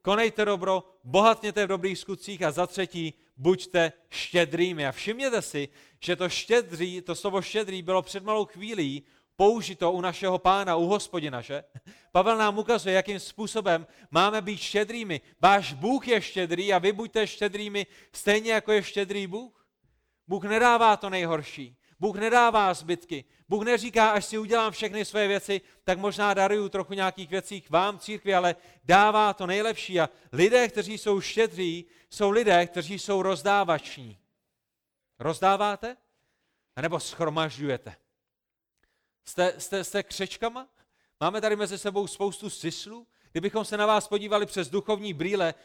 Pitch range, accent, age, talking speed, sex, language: 170-210 Hz, native, 30-49, 145 wpm, male, Czech